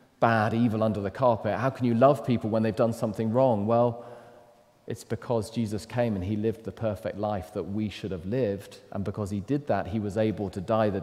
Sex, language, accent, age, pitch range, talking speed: male, English, British, 30-49, 100-120 Hz, 230 wpm